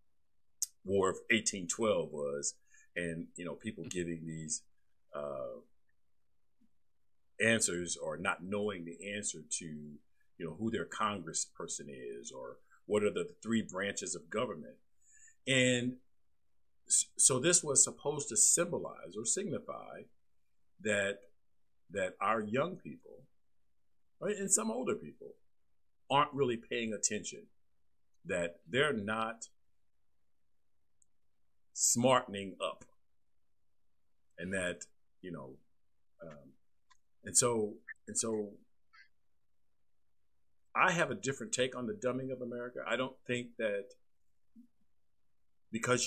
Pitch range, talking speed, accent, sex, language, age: 80-120 Hz, 110 wpm, American, male, English, 50-69